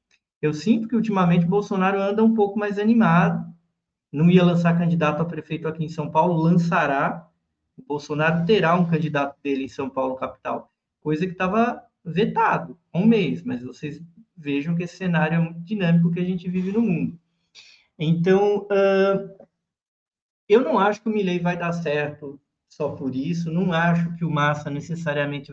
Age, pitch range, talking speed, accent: 20-39, 155-205 Hz, 170 wpm, Brazilian